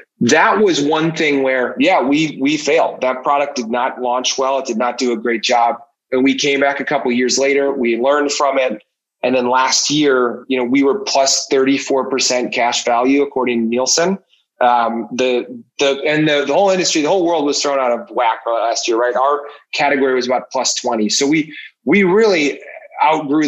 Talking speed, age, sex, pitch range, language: 210 wpm, 30-49, male, 125-145 Hz, English